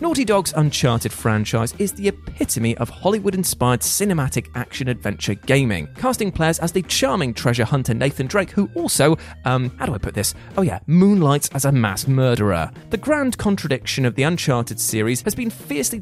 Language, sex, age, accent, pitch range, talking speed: English, male, 30-49, British, 115-155 Hz, 170 wpm